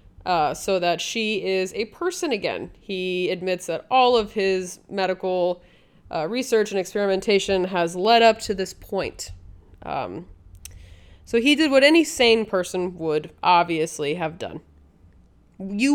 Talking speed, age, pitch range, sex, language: 145 wpm, 20-39, 175-215 Hz, female, English